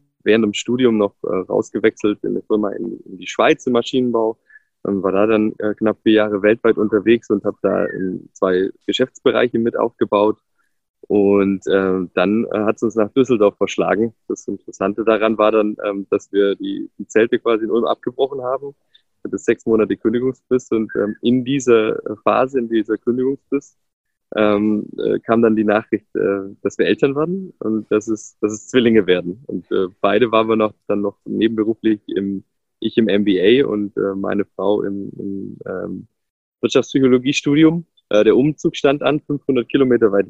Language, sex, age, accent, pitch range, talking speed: German, male, 20-39, German, 105-125 Hz, 165 wpm